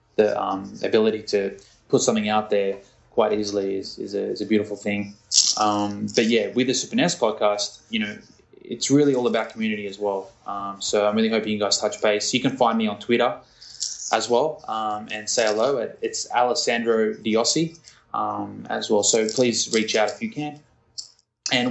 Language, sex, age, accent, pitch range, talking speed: English, male, 20-39, Australian, 105-125 Hz, 190 wpm